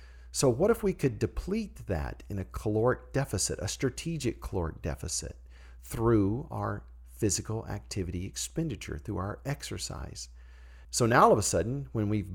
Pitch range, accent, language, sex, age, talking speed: 80-125 Hz, American, English, male, 50-69, 150 wpm